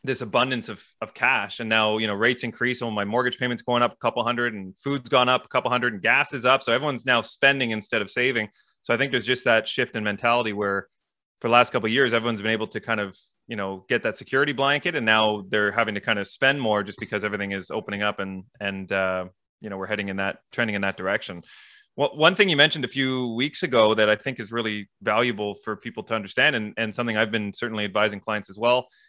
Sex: male